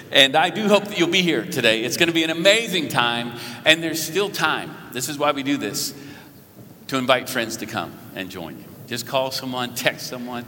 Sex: male